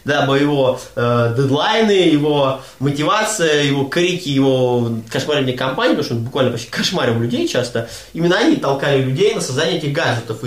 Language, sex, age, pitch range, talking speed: Russian, male, 20-39, 130-165 Hz, 155 wpm